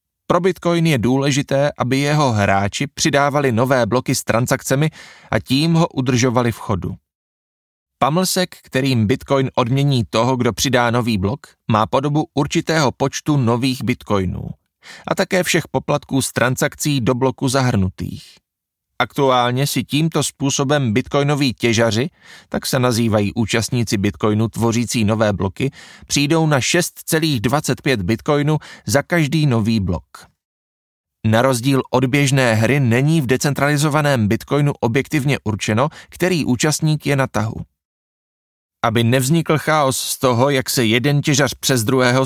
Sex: male